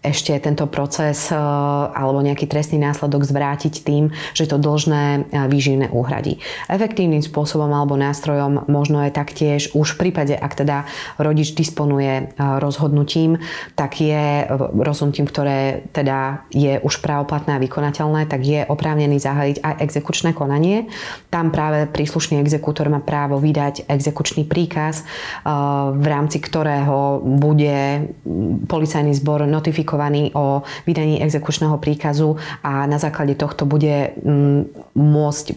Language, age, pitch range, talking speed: English, 20-39, 145-155 Hz, 120 wpm